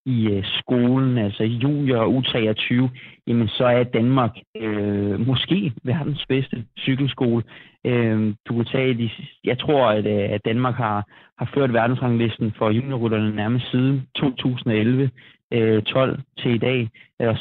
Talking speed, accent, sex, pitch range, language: 145 wpm, native, male, 110-130 Hz, Danish